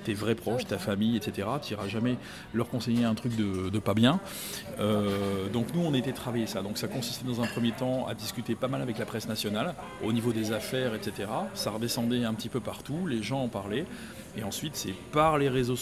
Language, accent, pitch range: French, French, 115-145 Hz